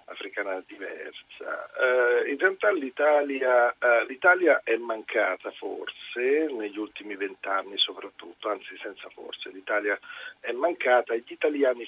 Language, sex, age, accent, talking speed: Italian, male, 50-69, native, 115 wpm